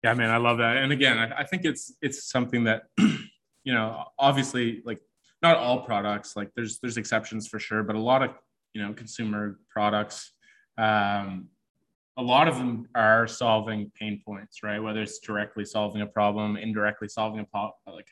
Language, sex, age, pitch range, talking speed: English, male, 20-39, 105-125 Hz, 185 wpm